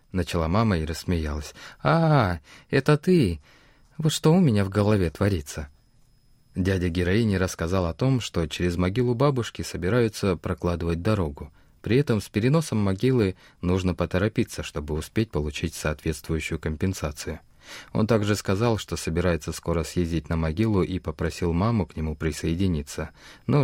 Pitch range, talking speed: 80-110 Hz, 135 wpm